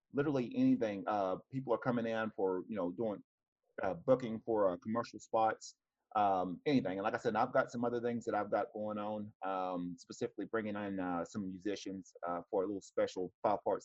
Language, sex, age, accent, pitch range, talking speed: English, male, 30-49, American, 105-120 Hz, 200 wpm